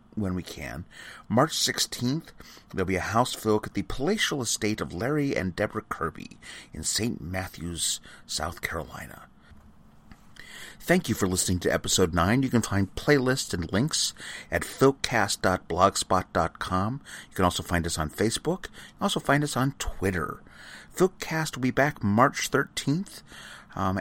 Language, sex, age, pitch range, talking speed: English, male, 30-49, 85-115 Hz, 150 wpm